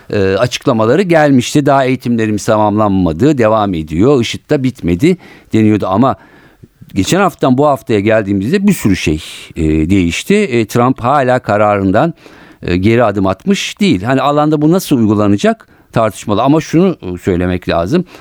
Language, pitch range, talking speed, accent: Turkish, 90-145 Hz, 120 wpm, native